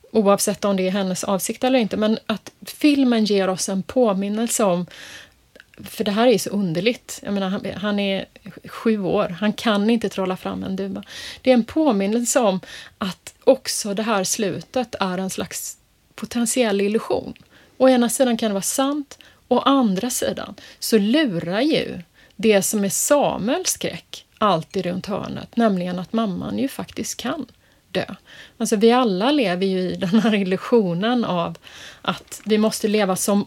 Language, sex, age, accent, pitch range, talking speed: Swedish, female, 30-49, native, 190-235 Hz, 165 wpm